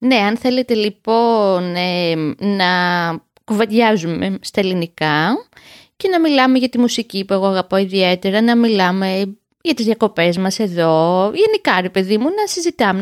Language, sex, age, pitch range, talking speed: Greek, female, 20-39, 180-250 Hz, 145 wpm